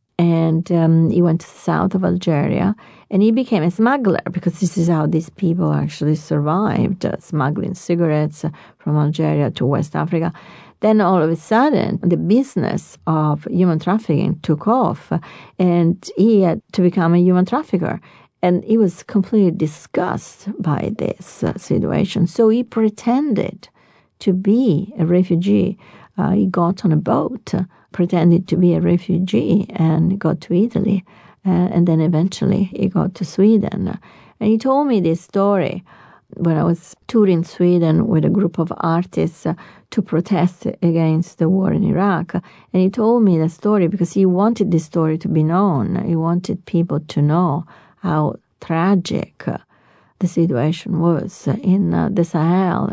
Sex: female